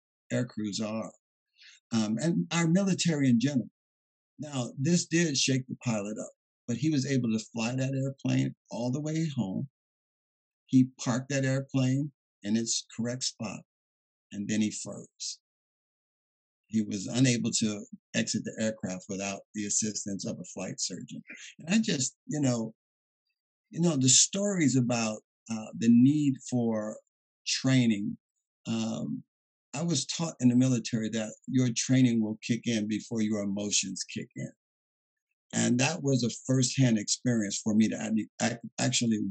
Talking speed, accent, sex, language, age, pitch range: 150 wpm, American, male, English, 50-69, 105-130 Hz